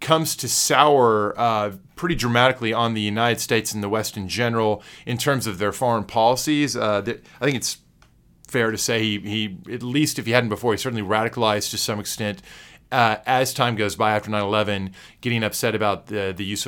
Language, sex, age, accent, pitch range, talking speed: English, male, 30-49, American, 100-125 Hz, 200 wpm